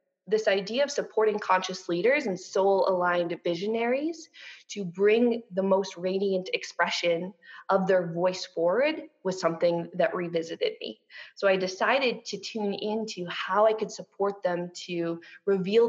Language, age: English, 20-39